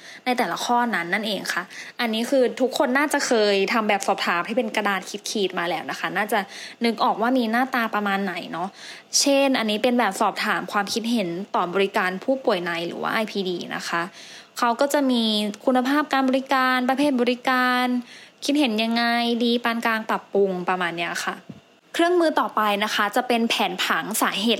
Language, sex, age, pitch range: English, female, 20-39, 200-255 Hz